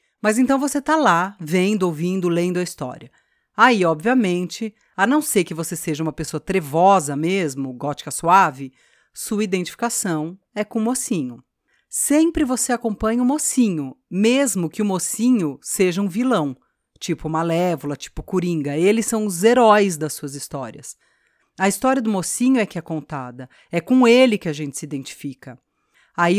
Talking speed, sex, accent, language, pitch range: 160 wpm, female, Brazilian, Portuguese, 160-230 Hz